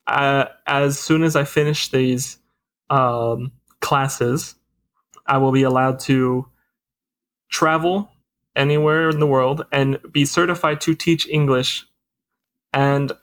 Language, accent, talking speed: English, American, 120 wpm